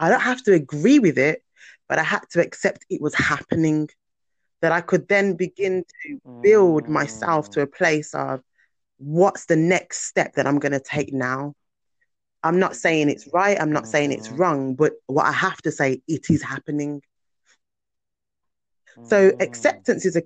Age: 20-39